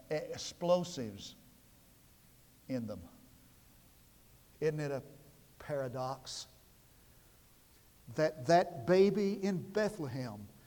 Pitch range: 135-200 Hz